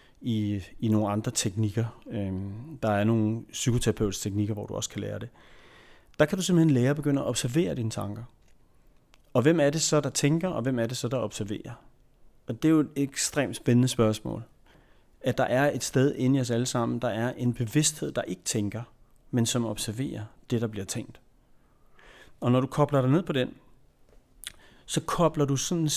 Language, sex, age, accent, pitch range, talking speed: Danish, male, 30-49, native, 105-135 Hz, 195 wpm